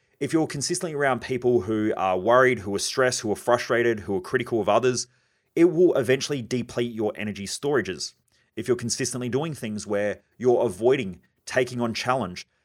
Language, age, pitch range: English, 30-49, 105-130 Hz